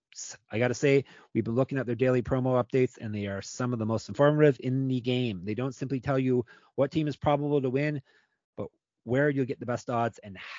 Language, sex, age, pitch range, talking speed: English, male, 30-49, 115-145 Hz, 240 wpm